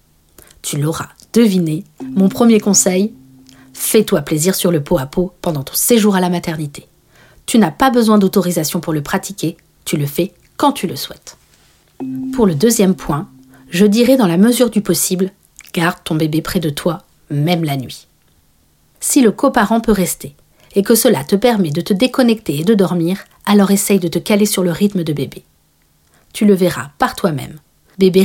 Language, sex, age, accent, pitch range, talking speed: French, female, 50-69, French, 155-215 Hz, 185 wpm